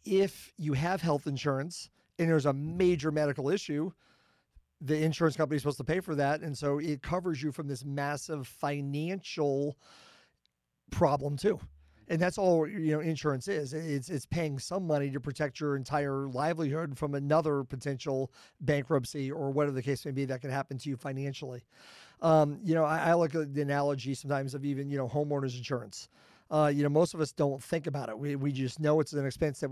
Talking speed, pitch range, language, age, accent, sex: 200 wpm, 140-160 Hz, English, 40-59, American, male